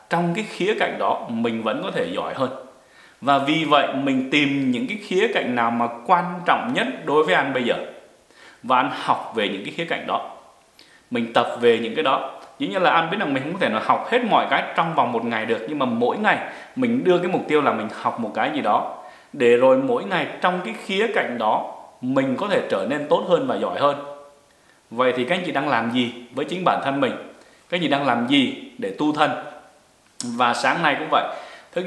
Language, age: English, 20-39